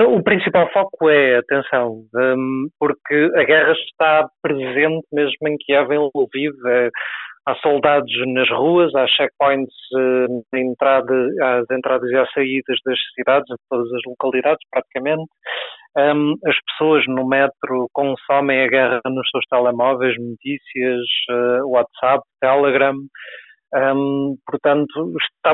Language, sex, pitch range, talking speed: Portuguese, male, 125-145 Hz, 115 wpm